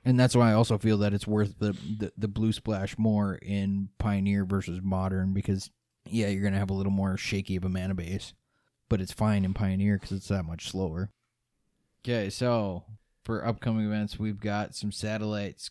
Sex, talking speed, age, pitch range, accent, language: male, 200 wpm, 20-39, 105-120 Hz, American, English